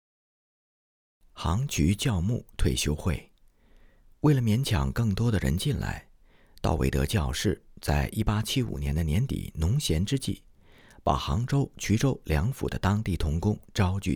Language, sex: Chinese, male